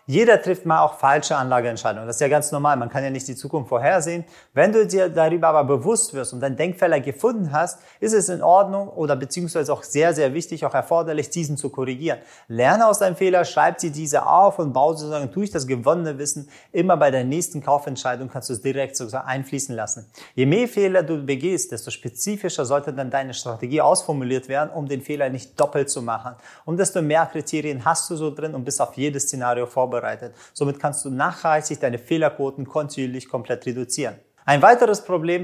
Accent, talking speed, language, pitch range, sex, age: German, 200 wpm, German, 130-170 Hz, male, 30-49